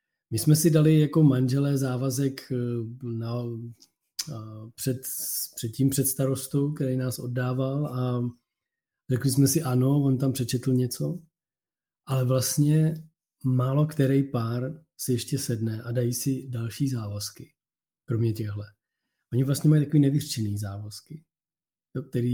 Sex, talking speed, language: male, 135 wpm, Czech